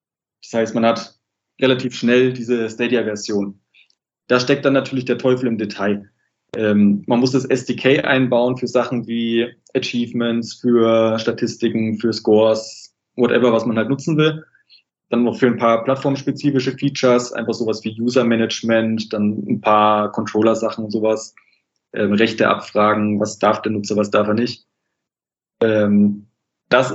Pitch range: 110-130 Hz